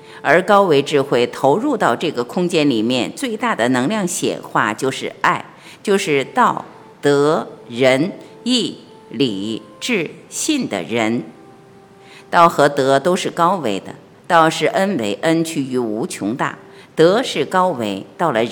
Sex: female